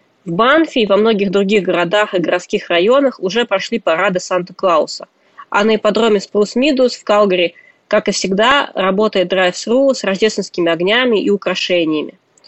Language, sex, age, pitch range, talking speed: Russian, female, 20-39, 185-240 Hz, 150 wpm